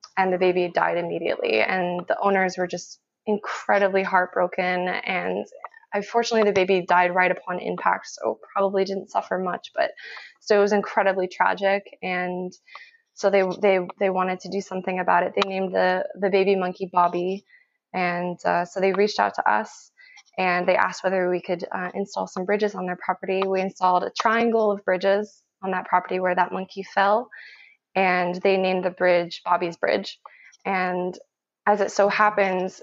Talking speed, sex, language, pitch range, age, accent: 175 wpm, female, English, 180-200 Hz, 20-39, American